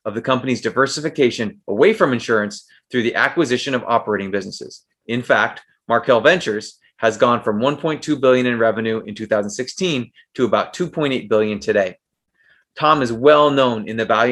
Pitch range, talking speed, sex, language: 110-130 Hz, 160 wpm, male, English